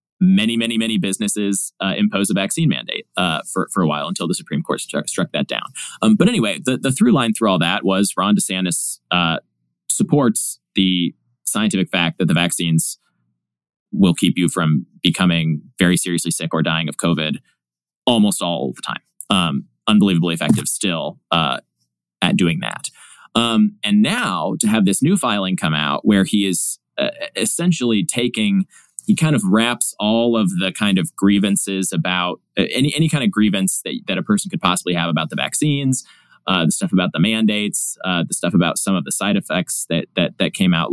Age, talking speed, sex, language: 20-39, 190 wpm, male, English